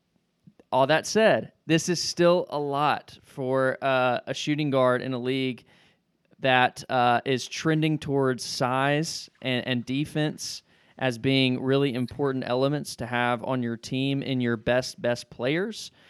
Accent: American